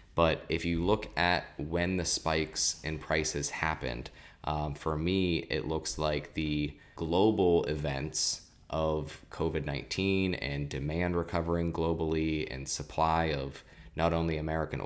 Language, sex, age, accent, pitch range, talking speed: English, male, 20-39, American, 75-85 Hz, 130 wpm